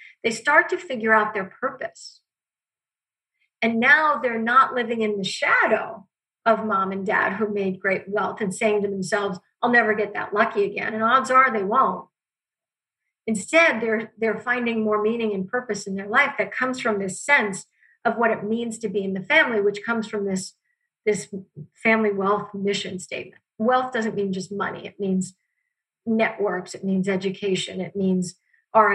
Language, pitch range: English, 200-245 Hz